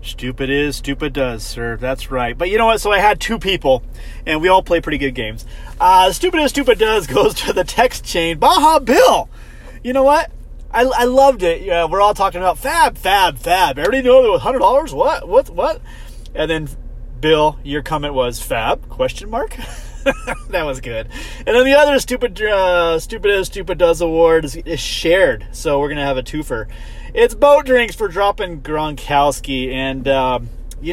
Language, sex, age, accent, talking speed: English, male, 30-49, American, 195 wpm